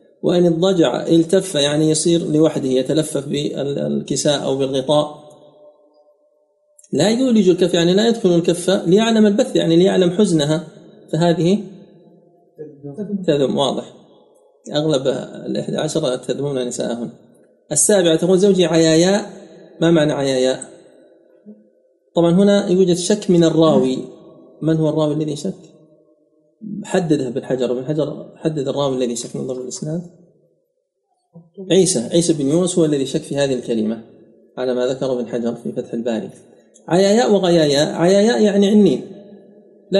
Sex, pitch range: male, 150-190 Hz